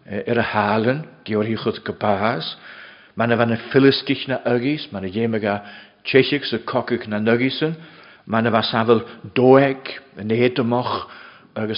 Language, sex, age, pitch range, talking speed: English, male, 60-79, 105-135 Hz, 80 wpm